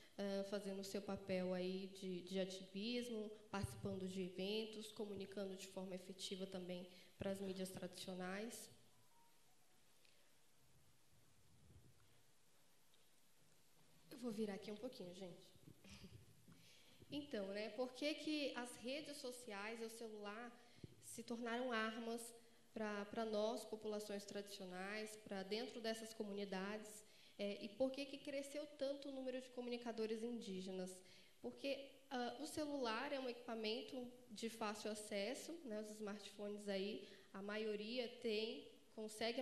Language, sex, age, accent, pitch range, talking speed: Portuguese, female, 10-29, Brazilian, 195-240 Hz, 120 wpm